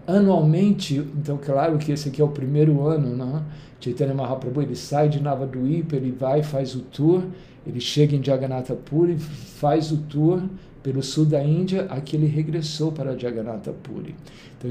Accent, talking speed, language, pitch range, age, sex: Brazilian, 170 wpm, Portuguese, 135-160 Hz, 60-79, male